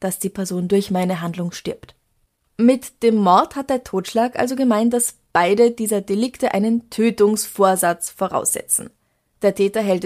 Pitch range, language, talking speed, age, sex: 185-240 Hz, German, 150 wpm, 20-39, female